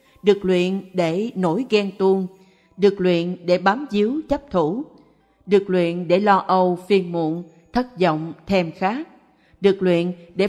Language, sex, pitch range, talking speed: Vietnamese, female, 180-215 Hz, 155 wpm